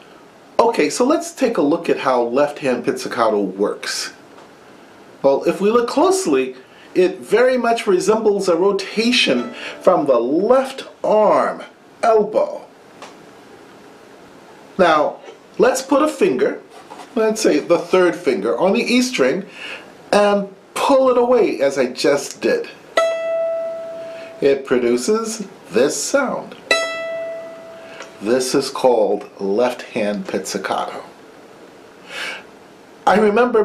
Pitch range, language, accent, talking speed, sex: 160-250 Hz, English, American, 110 wpm, male